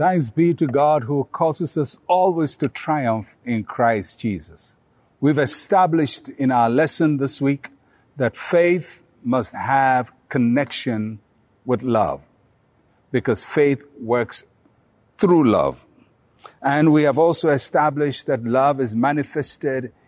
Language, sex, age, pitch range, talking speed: English, male, 60-79, 125-155 Hz, 125 wpm